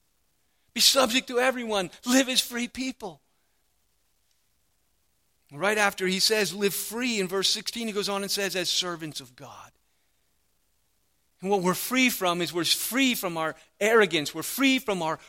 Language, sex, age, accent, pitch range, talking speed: English, male, 40-59, American, 160-220 Hz, 160 wpm